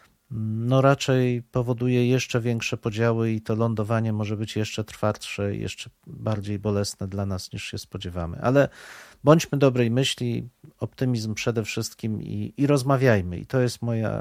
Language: Polish